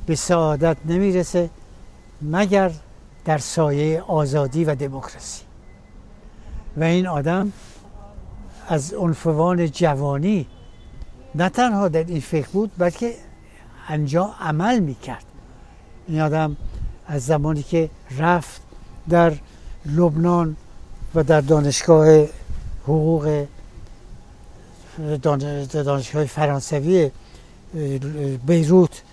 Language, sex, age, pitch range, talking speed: Persian, male, 60-79, 140-170 Hz, 80 wpm